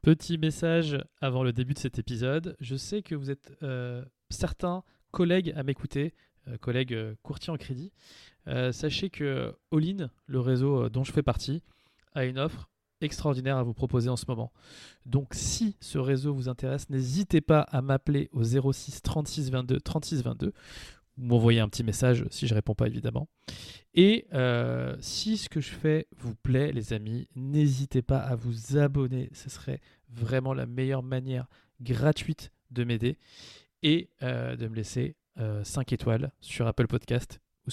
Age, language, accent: 20-39, French, French